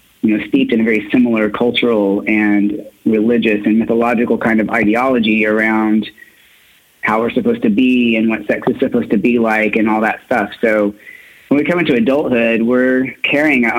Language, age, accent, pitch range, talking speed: English, 30-49, American, 105-125 Hz, 185 wpm